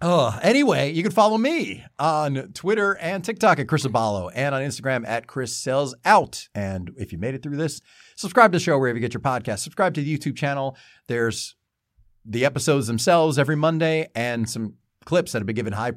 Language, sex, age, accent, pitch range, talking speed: English, male, 40-59, American, 110-160 Hz, 205 wpm